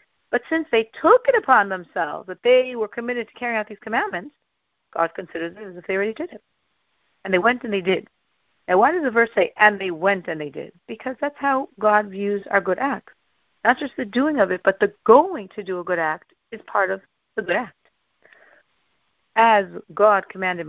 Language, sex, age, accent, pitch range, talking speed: English, female, 50-69, American, 190-255 Hz, 215 wpm